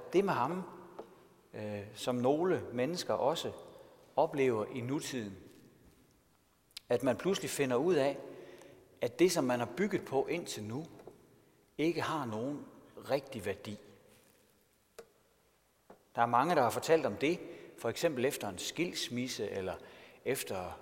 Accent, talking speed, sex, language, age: native, 130 wpm, male, Danish, 60-79